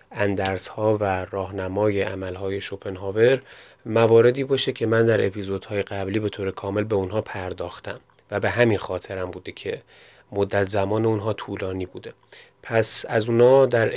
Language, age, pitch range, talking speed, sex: Persian, 30-49, 100-115 Hz, 160 wpm, male